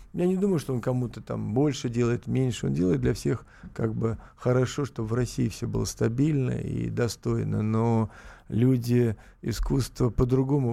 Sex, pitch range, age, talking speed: male, 115-135 Hz, 50-69, 160 wpm